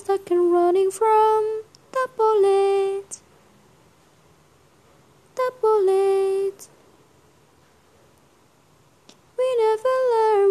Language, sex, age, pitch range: Indonesian, female, 20-39, 310-400 Hz